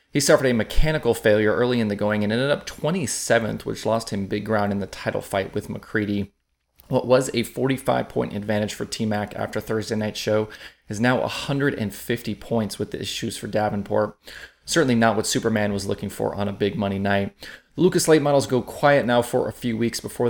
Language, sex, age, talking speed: English, male, 30-49, 200 wpm